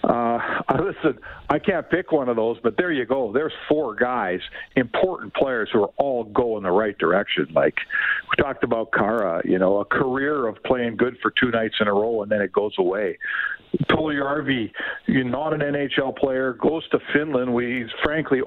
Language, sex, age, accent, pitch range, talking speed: English, male, 60-79, American, 120-155 Hz, 195 wpm